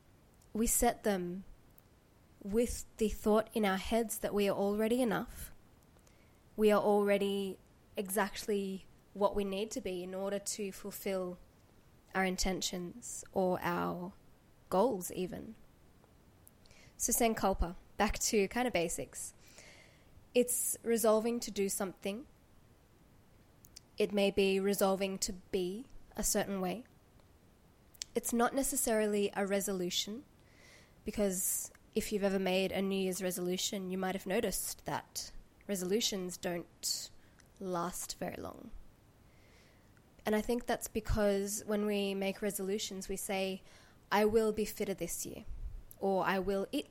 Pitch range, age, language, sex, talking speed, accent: 190-220 Hz, 20-39, English, female, 130 wpm, Australian